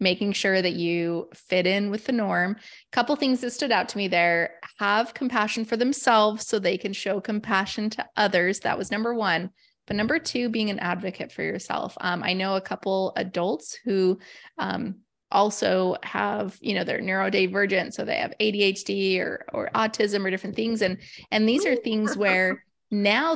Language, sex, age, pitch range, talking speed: English, female, 20-39, 200-245 Hz, 185 wpm